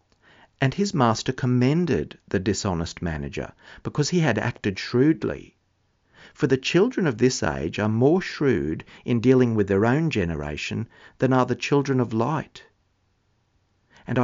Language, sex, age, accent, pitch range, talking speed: English, male, 50-69, Australian, 100-125 Hz, 145 wpm